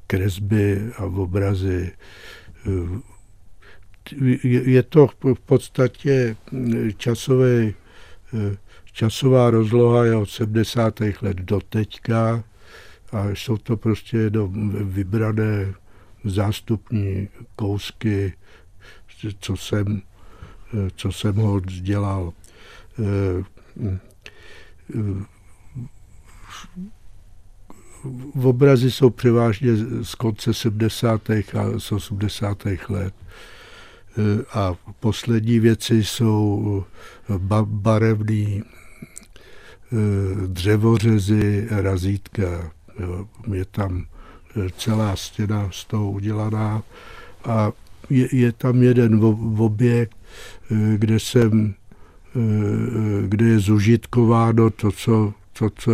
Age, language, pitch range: 60-79, Czech, 100-115 Hz